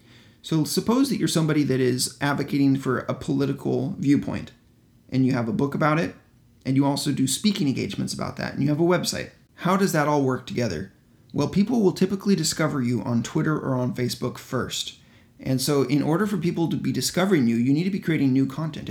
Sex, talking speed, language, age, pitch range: male, 215 wpm, English, 30-49, 130-165 Hz